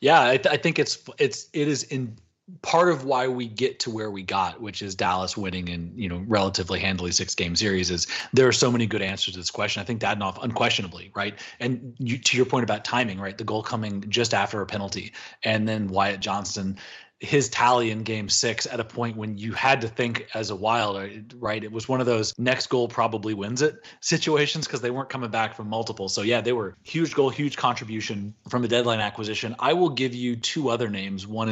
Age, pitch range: 30-49, 100-125 Hz